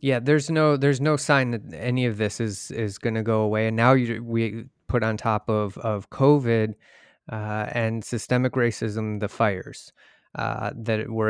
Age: 20-39